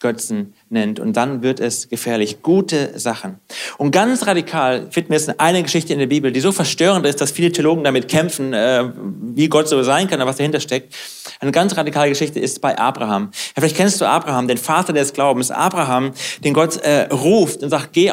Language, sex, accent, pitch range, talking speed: German, male, German, 135-175 Hz, 205 wpm